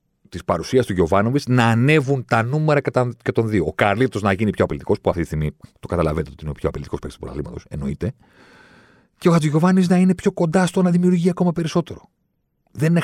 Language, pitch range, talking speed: Greek, 80-130 Hz, 210 wpm